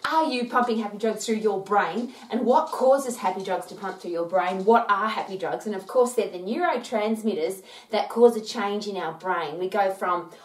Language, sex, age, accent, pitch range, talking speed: English, female, 30-49, Australian, 185-240 Hz, 220 wpm